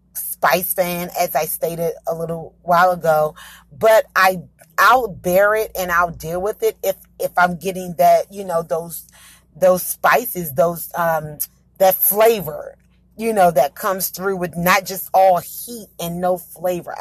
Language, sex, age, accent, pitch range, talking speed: English, female, 30-49, American, 165-195 Hz, 160 wpm